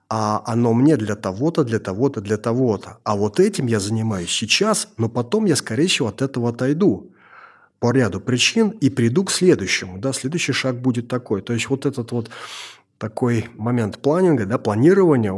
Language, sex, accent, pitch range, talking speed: Russian, male, native, 105-135 Hz, 175 wpm